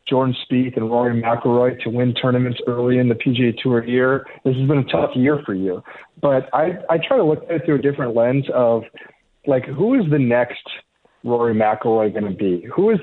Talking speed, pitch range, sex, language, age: 215 wpm, 120-145 Hz, male, English, 40-59